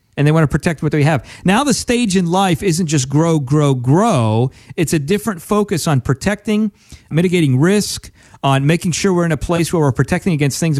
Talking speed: 210 wpm